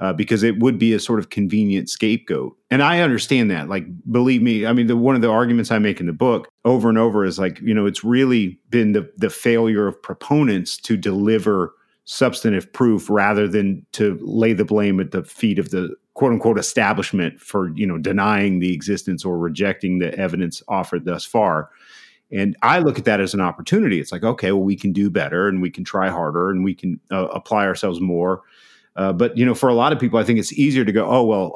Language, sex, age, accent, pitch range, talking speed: English, male, 40-59, American, 100-120 Hz, 225 wpm